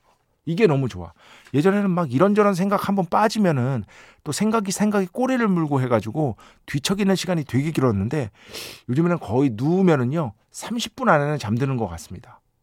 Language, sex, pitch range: Korean, male, 110-170 Hz